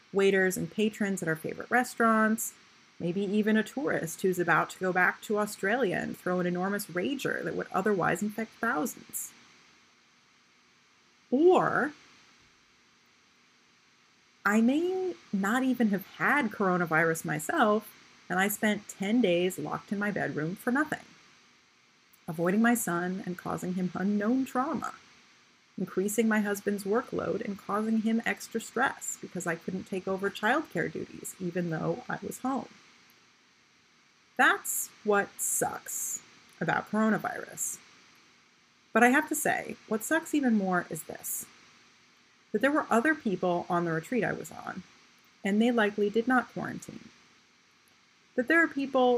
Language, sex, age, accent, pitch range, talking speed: English, female, 30-49, American, 185-240 Hz, 140 wpm